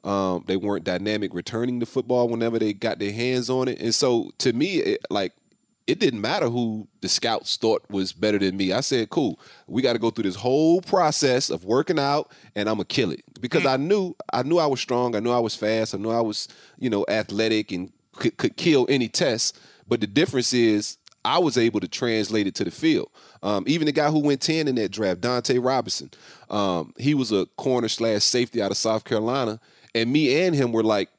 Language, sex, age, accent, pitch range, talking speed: English, male, 30-49, American, 100-125 Hz, 225 wpm